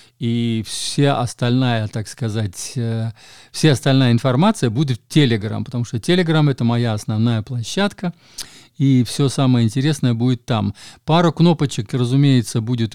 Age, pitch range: 50-69, 115-145 Hz